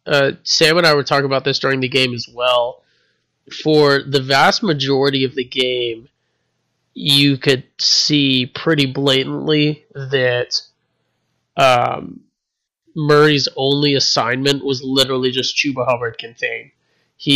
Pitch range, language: 125-140 Hz, English